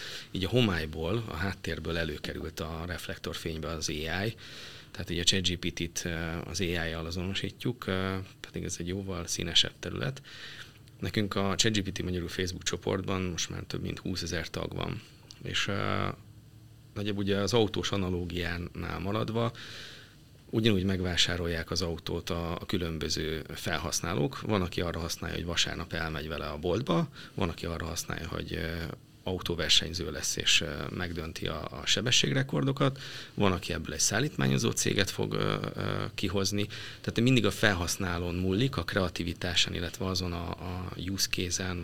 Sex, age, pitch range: male, 30-49, 85-105 Hz